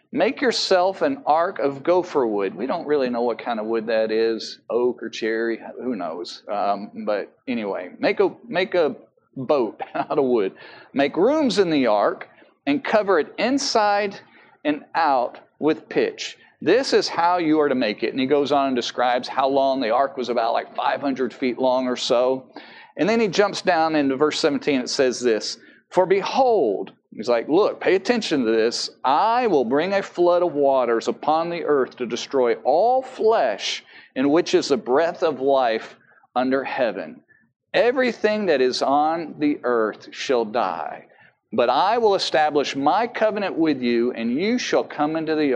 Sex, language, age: male, English, 40-59